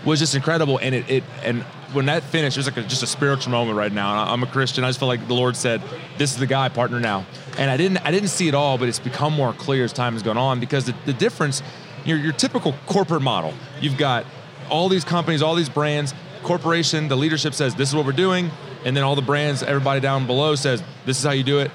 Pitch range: 130-160 Hz